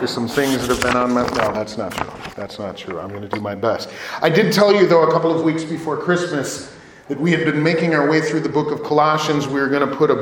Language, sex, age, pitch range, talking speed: English, male, 40-59, 130-160 Hz, 295 wpm